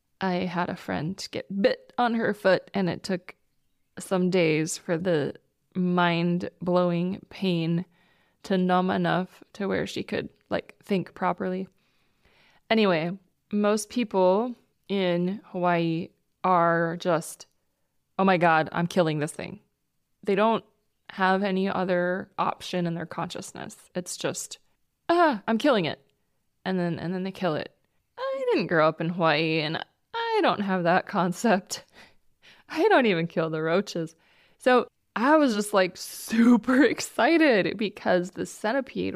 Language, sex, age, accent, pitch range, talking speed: English, female, 20-39, American, 175-225 Hz, 140 wpm